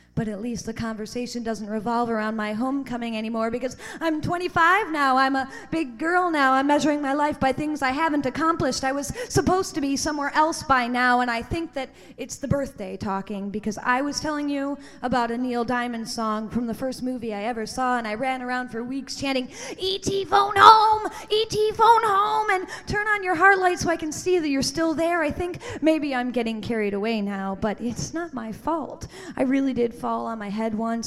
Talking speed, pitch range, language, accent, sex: 215 wpm, 235-300 Hz, English, American, female